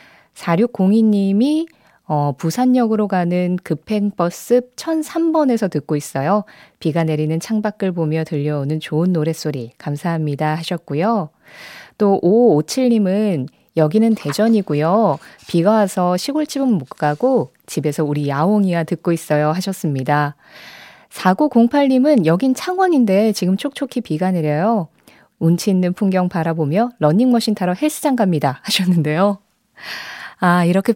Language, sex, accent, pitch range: Korean, female, native, 160-225 Hz